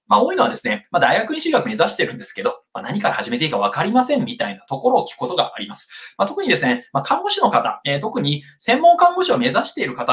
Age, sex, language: 20-39, male, Japanese